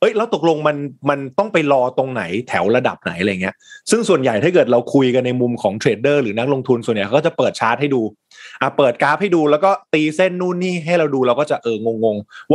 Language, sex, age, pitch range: Thai, male, 20-39, 120-165 Hz